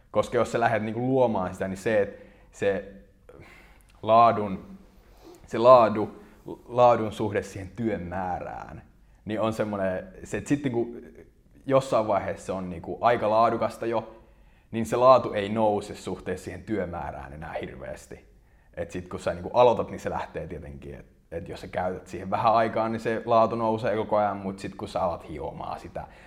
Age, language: 30-49, Finnish